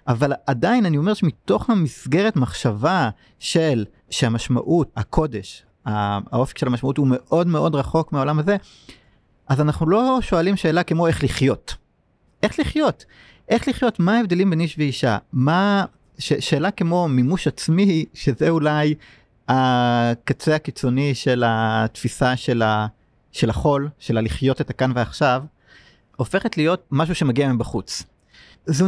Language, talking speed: Hebrew, 130 wpm